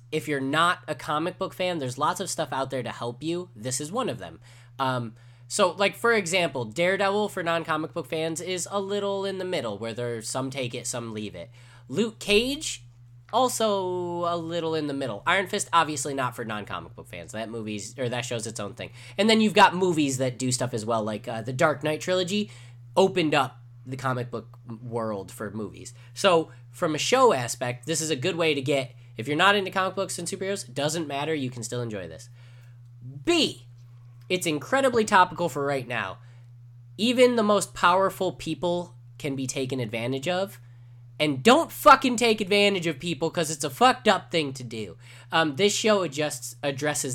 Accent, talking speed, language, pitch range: American, 195 wpm, English, 120-175 Hz